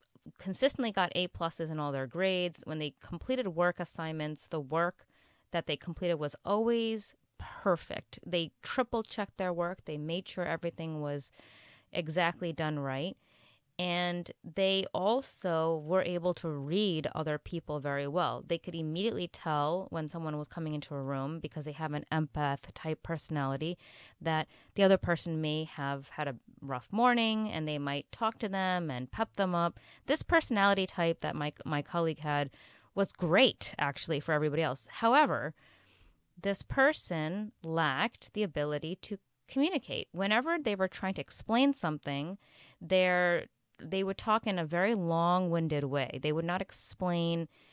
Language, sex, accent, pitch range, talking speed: English, female, American, 150-190 Hz, 155 wpm